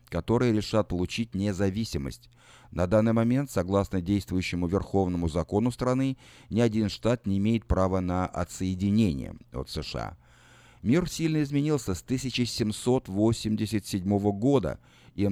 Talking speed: 115 wpm